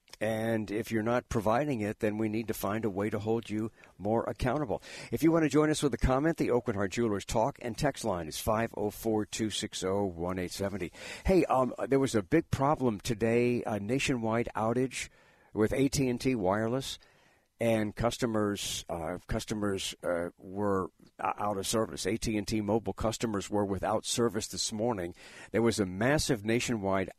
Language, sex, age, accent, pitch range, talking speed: English, male, 60-79, American, 100-115 Hz, 160 wpm